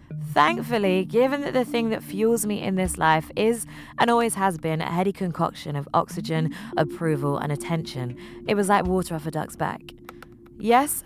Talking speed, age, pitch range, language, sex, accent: 180 wpm, 20-39, 150-205 Hz, English, female, British